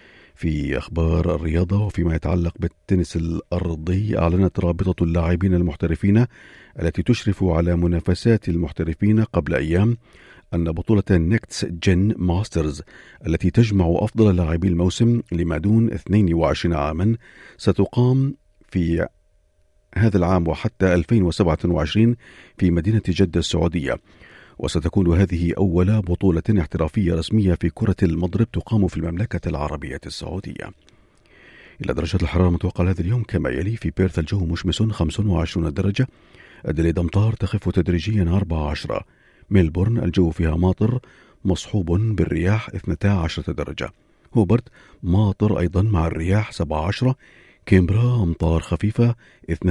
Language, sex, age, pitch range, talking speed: Arabic, male, 50-69, 85-105 Hz, 110 wpm